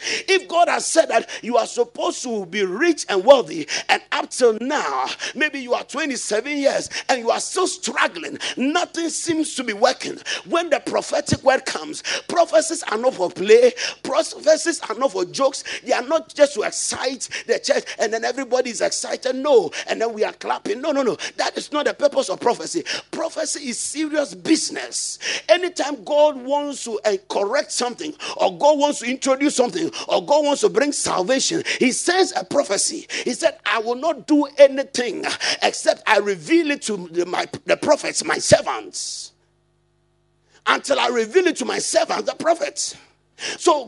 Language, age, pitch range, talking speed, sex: English, 50-69, 240-335 Hz, 175 wpm, male